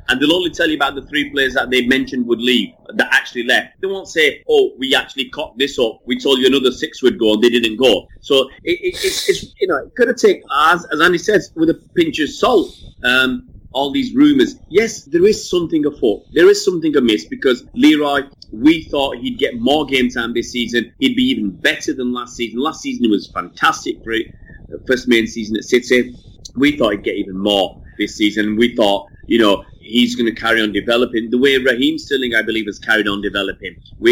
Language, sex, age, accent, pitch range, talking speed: English, male, 30-49, British, 110-160 Hz, 225 wpm